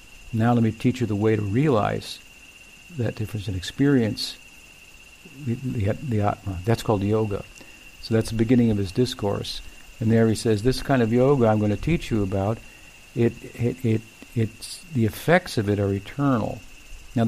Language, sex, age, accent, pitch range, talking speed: English, male, 60-79, American, 105-120 Hz, 180 wpm